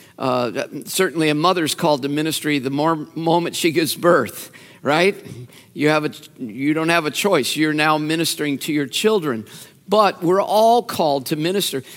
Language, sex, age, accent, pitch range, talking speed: English, male, 50-69, American, 140-180 Hz, 190 wpm